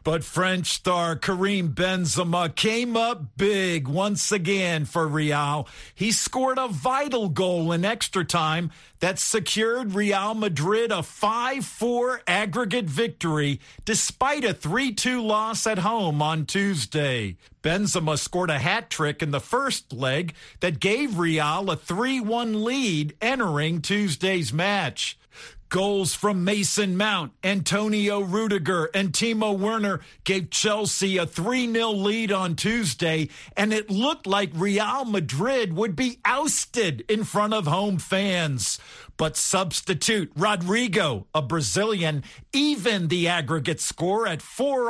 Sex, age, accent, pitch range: male, 50-69, American, 160-215 Hz